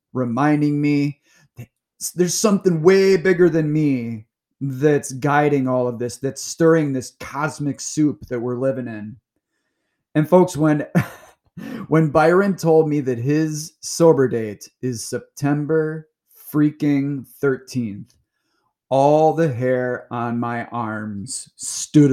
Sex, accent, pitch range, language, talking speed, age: male, American, 125-155 Hz, English, 120 wpm, 30-49